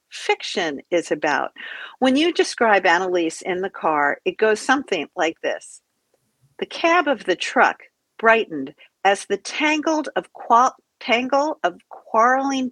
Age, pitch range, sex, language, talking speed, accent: 50-69, 190-275 Hz, female, English, 125 wpm, American